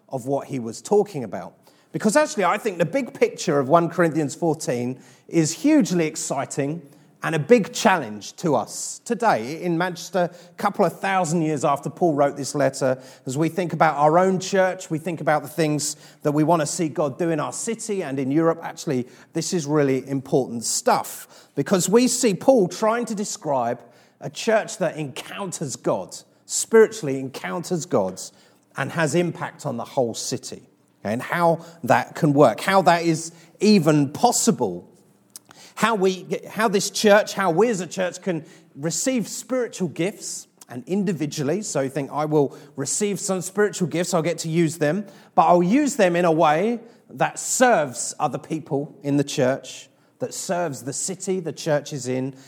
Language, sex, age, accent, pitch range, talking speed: English, male, 30-49, British, 145-190 Hz, 175 wpm